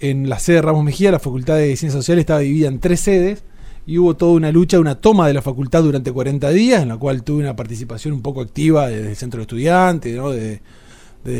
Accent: Argentinian